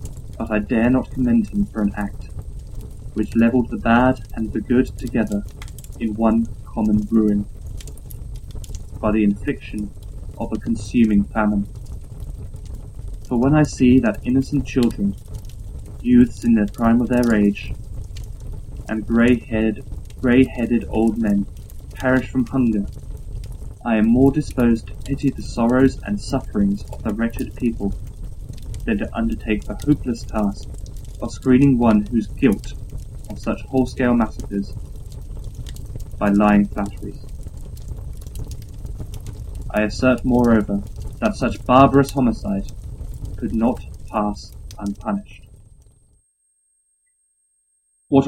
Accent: British